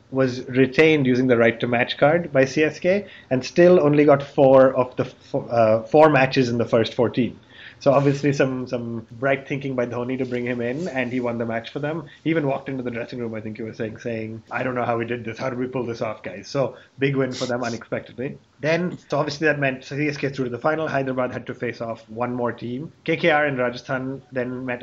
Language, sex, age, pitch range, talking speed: English, male, 30-49, 120-140 Hz, 240 wpm